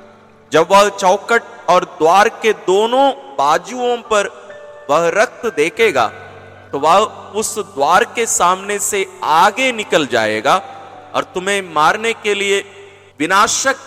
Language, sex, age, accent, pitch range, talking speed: Hindi, male, 40-59, native, 180-250 Hz, 130 wpm